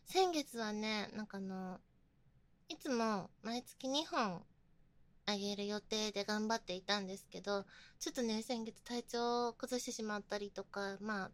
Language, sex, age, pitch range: Japanese, female, 20-39, 185-235 Hz